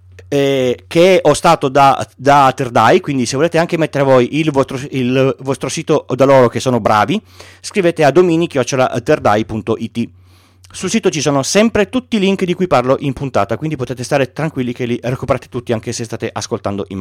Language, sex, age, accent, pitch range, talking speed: Italian, male, 30-49, native, 110-170 Hz, 185 wpm